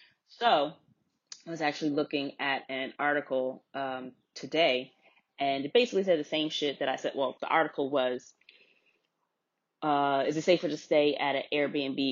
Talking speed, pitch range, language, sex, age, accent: 165 wpm, 140-170 Hz, English, female, 20-39, American